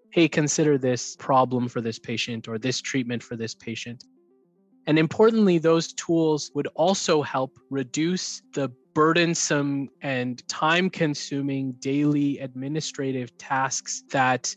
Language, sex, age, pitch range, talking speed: English, male, 20-39, 125-155 Hz, 125 wpm